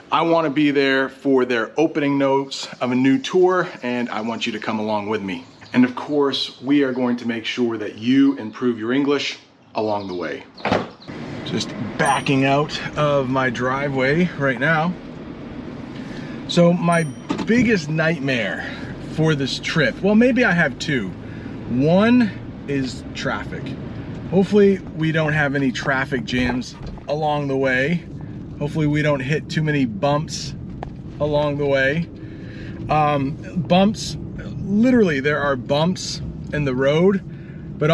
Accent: American